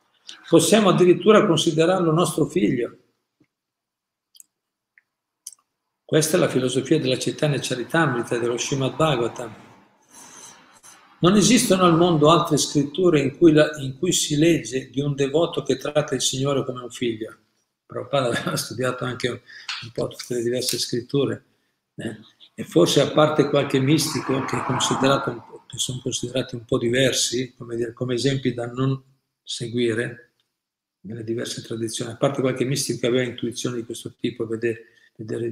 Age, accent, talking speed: 50-69, native, 145 wpm